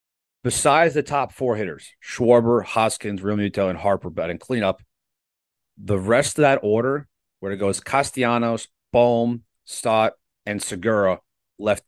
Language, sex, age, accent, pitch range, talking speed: English, male, 30-49, American, 95-120 Hz, 125 wpm